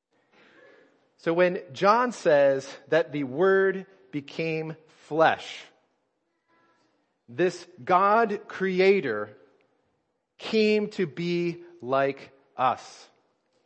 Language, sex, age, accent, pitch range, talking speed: English, male, 40-59, American, 150-190 Hz, 75 wpm